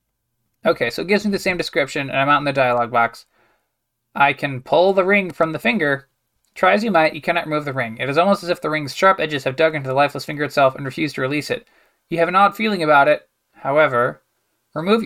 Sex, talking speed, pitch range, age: male, 245 wpm, 135-175 Hz, 20-39